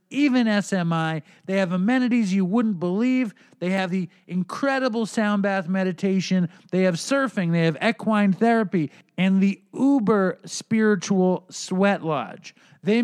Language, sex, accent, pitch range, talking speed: English, male, American, 185-225 Hz, 135 wpm